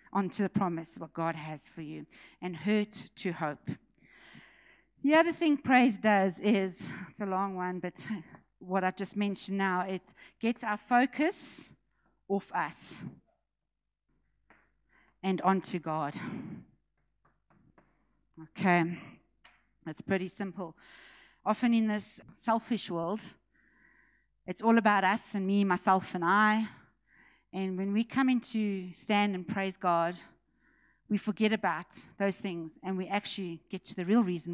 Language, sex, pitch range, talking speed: English, female, 175-215 Hz, 135 wpm